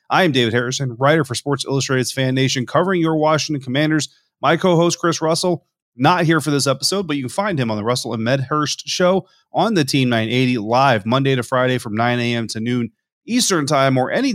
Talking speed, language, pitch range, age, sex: 215 wpm, English, 125-160 Hz, 30-49, male